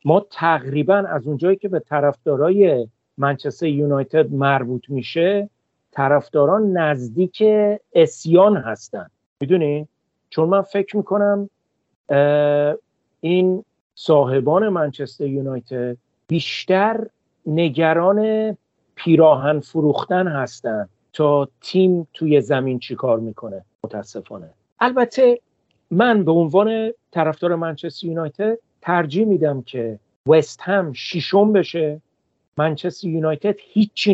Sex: male